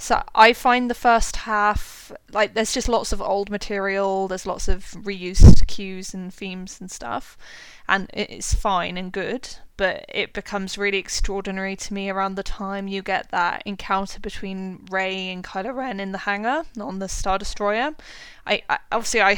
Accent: British